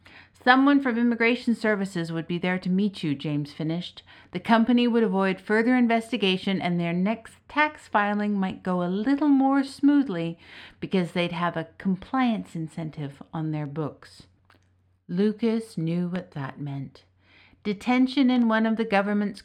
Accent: American